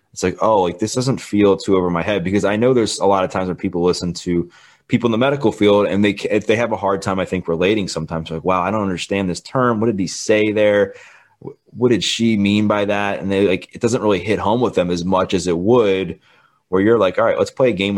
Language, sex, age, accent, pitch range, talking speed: English, male, 20-39, American, 90-115 Hz, 275 wpm